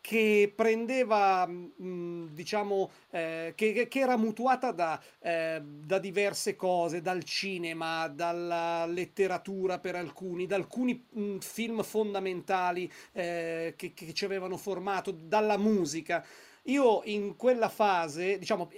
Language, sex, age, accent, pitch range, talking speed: Italian, male, 40-59, native, 160-210 Hz, 110 wpm